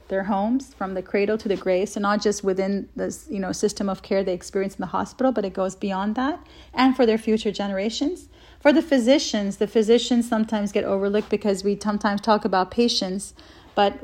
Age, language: 30-49, English